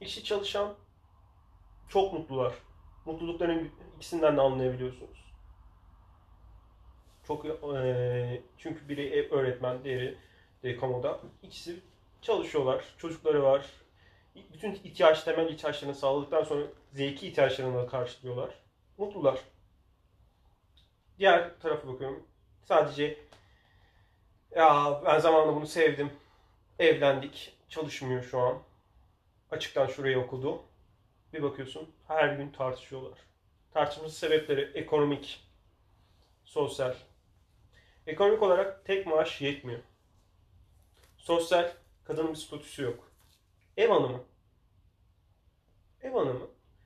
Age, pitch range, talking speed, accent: 30-49, 100-155 Hz, 90 wpm, native